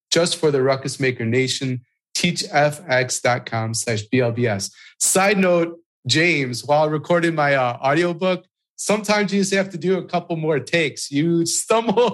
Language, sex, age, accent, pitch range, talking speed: English, male, 30-49, American, 130-170 Hz, 150 wpm